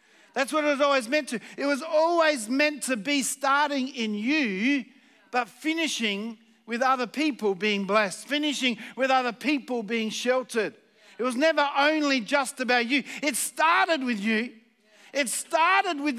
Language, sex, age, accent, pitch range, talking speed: English, male, 50-69, Australian, 225-285 Hz, 160 wpm